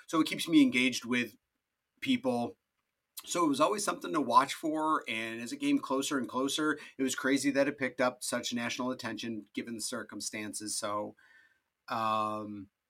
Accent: American